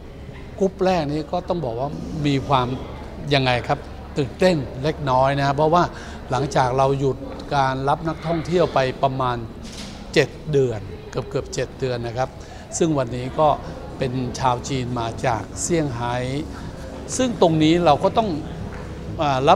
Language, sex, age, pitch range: Thai, male, 60-79, 125-155 Hz